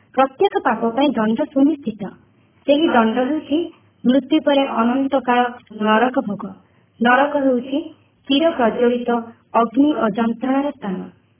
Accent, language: native, Hindi